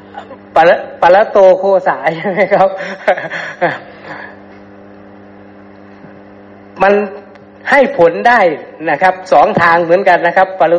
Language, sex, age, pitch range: Thai, male, 60-79, 140-185 Hz